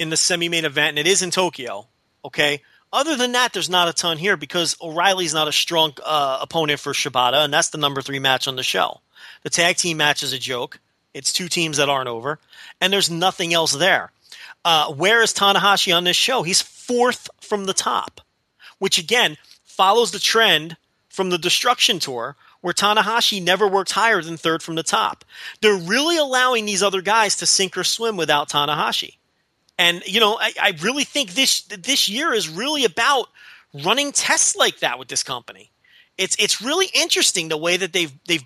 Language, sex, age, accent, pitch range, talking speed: English, male, 30-49, American, 155-210 Hz, 195 wpm